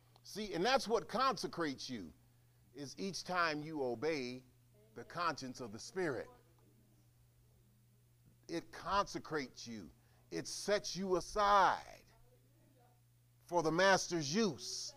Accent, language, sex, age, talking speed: American, English, male, 40-59, 110 wpm